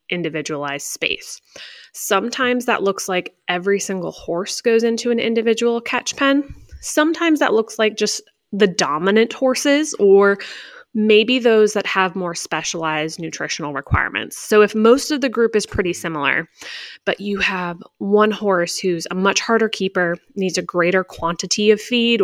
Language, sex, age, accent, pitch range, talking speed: English, female, 20-39, American, 175-235 Hz, 155 wpm